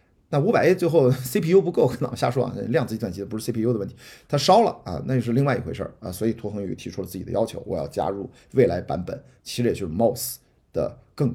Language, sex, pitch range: Chinese, male, 120-145 Hz